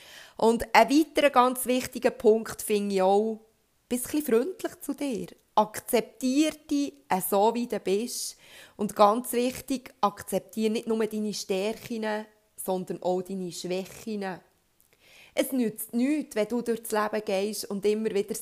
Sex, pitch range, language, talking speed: female, 195-260 Hz, German, 145 wpm